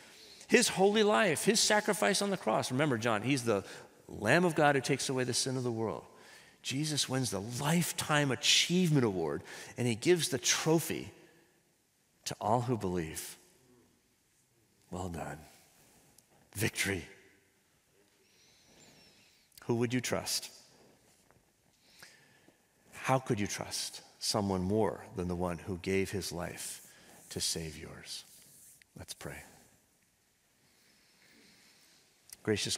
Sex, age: male, 40-59